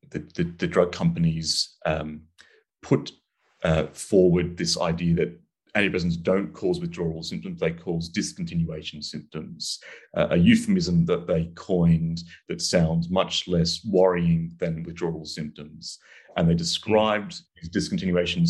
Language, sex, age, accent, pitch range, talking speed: English, male, 30-49, British, 80-90 Hz, 125 wpm